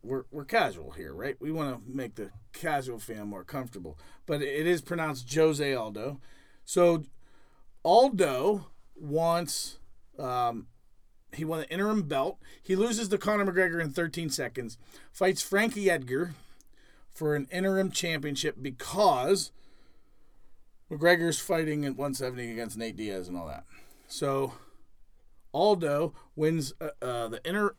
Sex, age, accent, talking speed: male, 40-59, American, 135 wpm